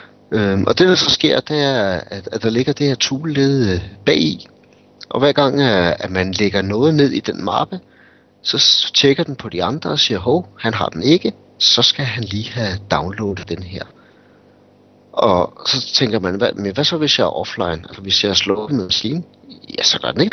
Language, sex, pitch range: Danish, male, 95-135 Hz